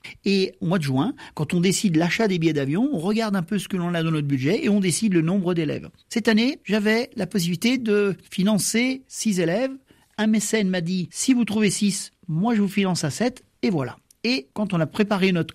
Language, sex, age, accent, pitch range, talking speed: French, male, 50-69, French, 160-215 Hz, 240 wpm